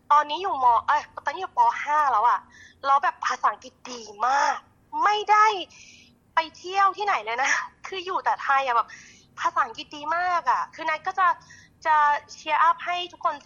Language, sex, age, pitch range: Thai, female, 20-39, 245-335 Hz